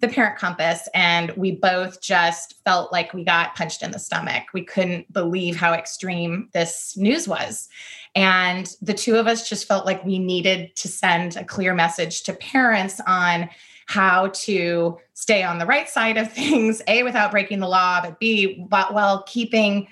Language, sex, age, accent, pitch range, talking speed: English, female, 20-39, American, 180-220 Hz, 180 wpm